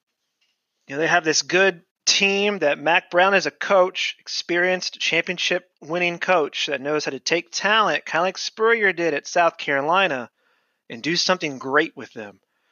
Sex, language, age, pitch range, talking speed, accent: male, English, 30-49, 145-195 Hz, 170 wpm, American